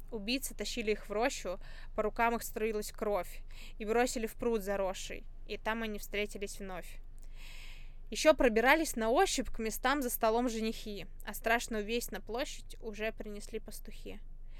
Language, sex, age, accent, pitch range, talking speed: Russian, female, 20-39, native, 200-230 Hz, 150 wpm